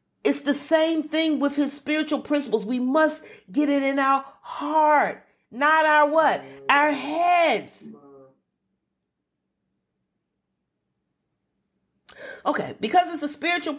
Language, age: English, 40-59